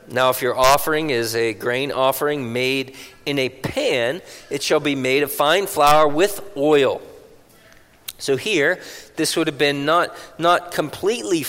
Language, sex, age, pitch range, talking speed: English, male, 40-59, 140-185 Hz, 155 wpm